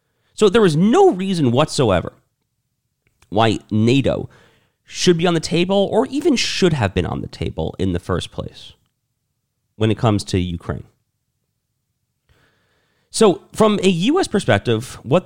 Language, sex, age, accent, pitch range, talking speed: English, male, 40-59, American, 110-140 Hz, 140 wpm